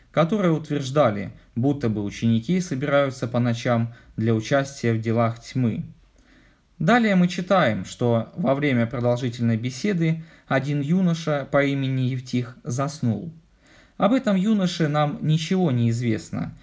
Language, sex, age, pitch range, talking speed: Russian, male, 20-39, 120-165 Hz, 125 wpm